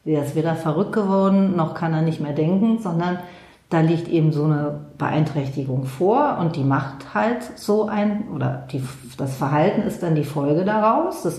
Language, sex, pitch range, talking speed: German, female, 150-180 Hz, 185 wpm